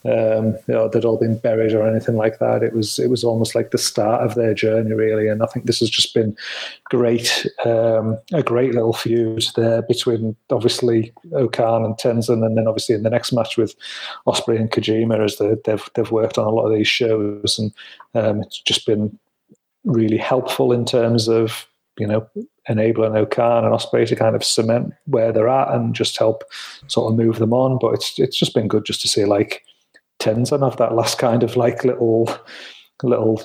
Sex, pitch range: male, 110-125 Hz